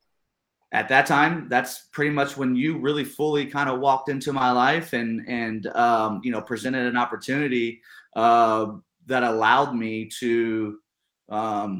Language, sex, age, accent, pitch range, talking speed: English, male, 30-49, American, 105-125 Hz, 155 wpm